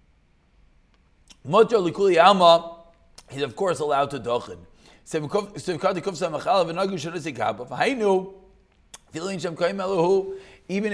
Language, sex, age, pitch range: English, male, 30-49, 145-195 Hz